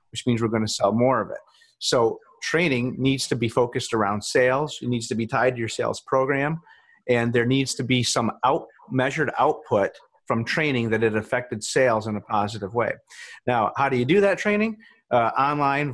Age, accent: 30-49, American